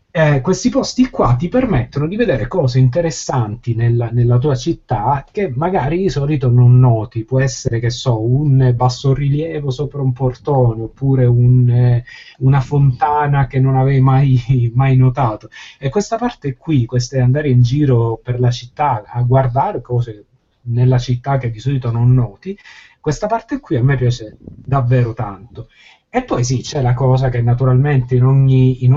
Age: 30-49